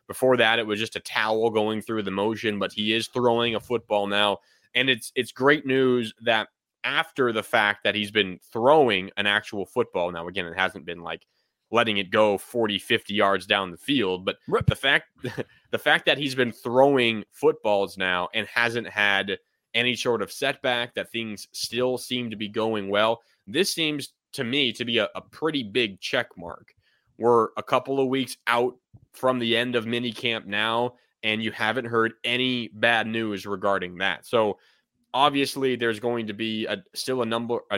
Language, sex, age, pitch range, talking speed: English, male, 20-39, 110-125 Hz, 190 wpm